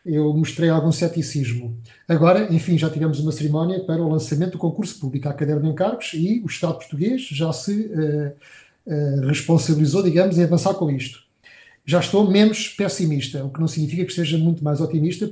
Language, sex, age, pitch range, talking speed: Portuguese, male, 30-49, 155-190 Hz, 175 wpm